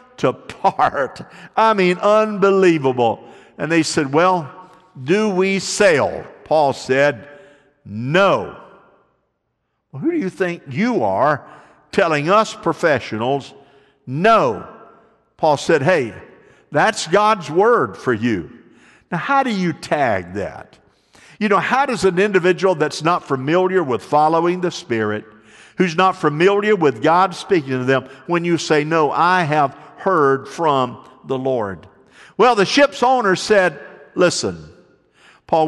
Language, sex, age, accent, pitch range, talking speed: English, male, 50-69, American, 140-190 Hz, 130 wpm